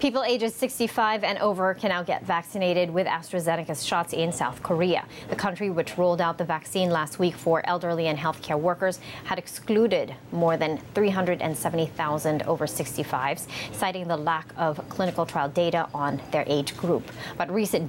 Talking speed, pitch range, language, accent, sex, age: 165 wpm, 155-185 Hz, English, American, female, 30-49